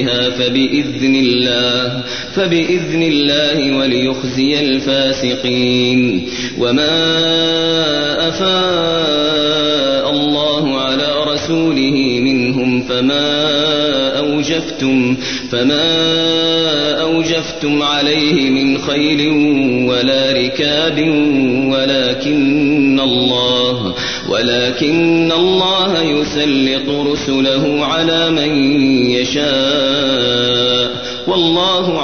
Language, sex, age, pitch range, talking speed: Arabic, male, 30-49, 130-155 Hz, 60 wpm